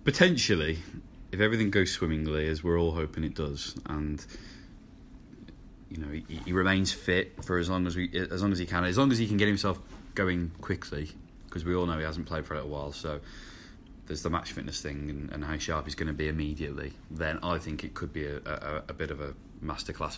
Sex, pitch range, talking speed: male, 75-90 Hz, 225 wpm